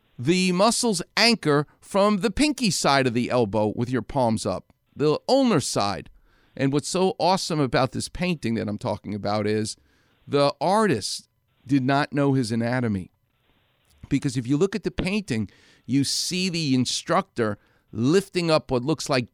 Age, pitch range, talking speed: 50-69, 120-180 Hz, 160 wpm